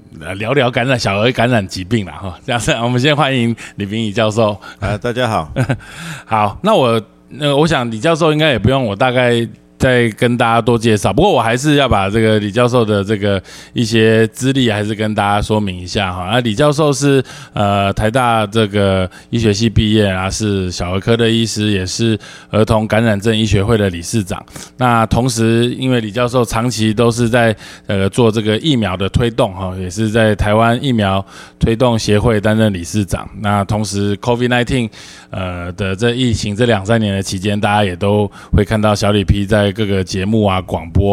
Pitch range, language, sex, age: 100-120 Hz, Chinese, male, 20-39